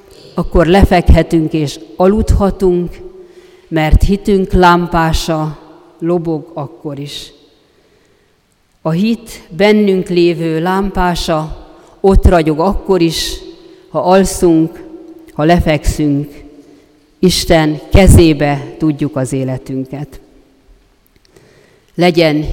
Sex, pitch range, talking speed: female, 155-195 Hz, 75 wpm